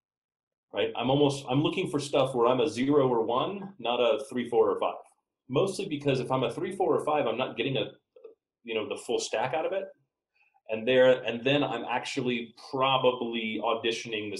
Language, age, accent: English, 30-49, American